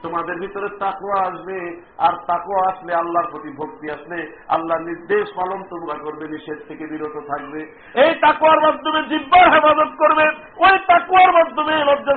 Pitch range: 170-255 Hz